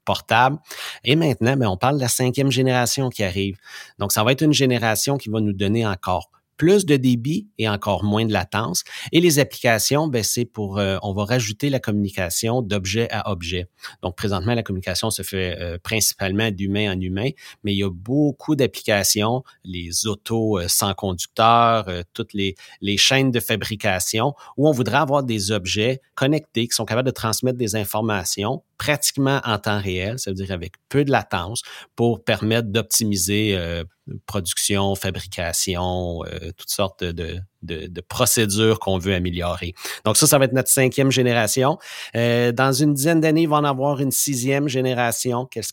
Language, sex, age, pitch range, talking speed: French, male, 30-49, 95-125 Hz, 175 wpm